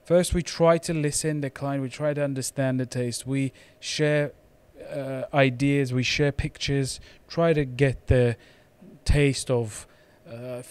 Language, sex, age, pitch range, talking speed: English, male, 30-49, 120-145 Hz, 150 wpm